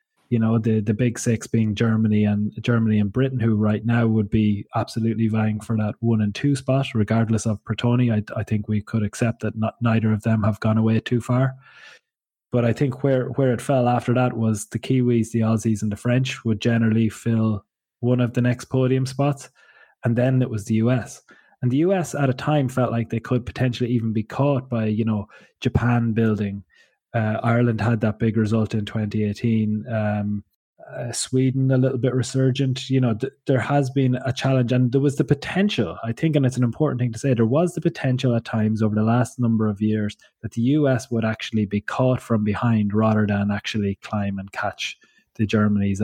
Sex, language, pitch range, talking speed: male, English, 110-130 Hz, 210 wpm